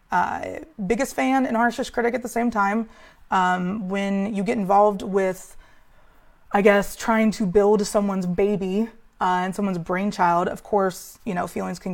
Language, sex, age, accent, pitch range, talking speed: English, female, 20-39, American, 180-220 Hz, 165 wpm